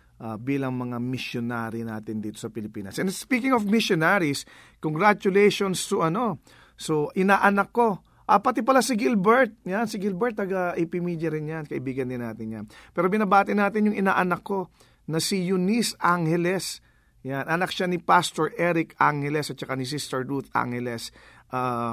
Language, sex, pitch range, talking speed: English, male, 125-175 Hz, 160 wpm